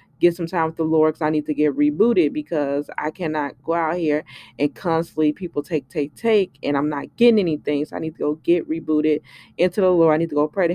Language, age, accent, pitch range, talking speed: English, 20-39, American, 150-190 Hz, 250 wpm